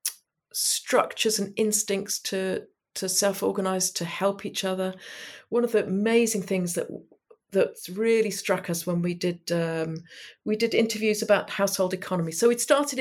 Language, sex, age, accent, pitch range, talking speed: English, female, 50-69, British, 160-230 Hz, 160 wpm